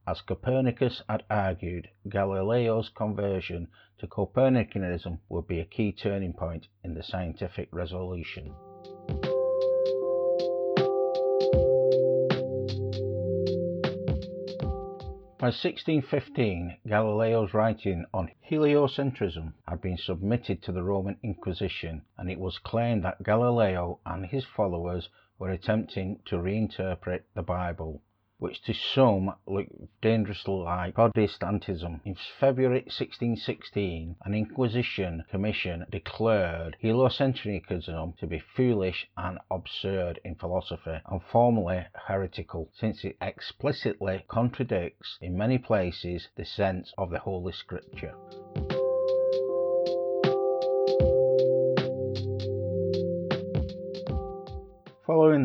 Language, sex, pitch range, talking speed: English, male, 90-130 Hz, 90 wpm